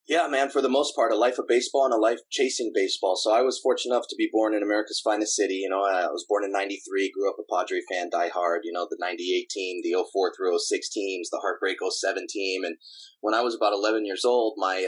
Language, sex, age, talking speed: English, male, 20-39, 260 wpm